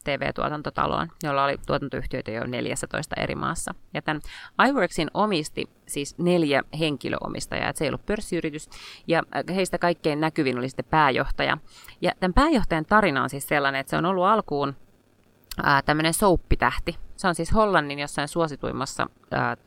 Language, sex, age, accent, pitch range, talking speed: Finnish, female, 30-49, native, 140-185 Hz, 150 wpm